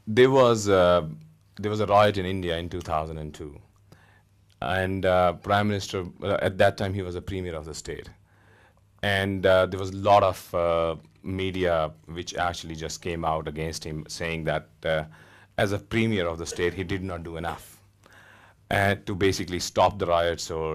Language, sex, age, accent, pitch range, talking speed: English, male, 30-49, Indian, 85-105 Hz, 180 wpm